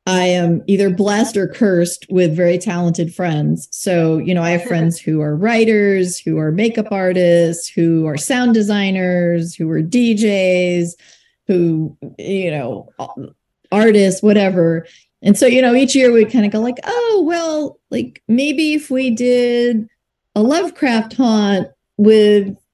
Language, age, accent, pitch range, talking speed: English, 30-49, American, 185-245 Hz, 150 wpm